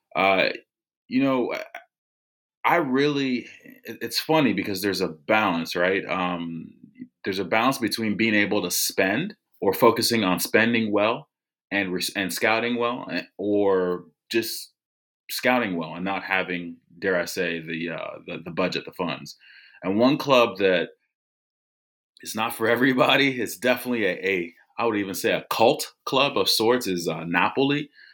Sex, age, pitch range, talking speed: male, 30-49, 90-115 Hz, 140 wpm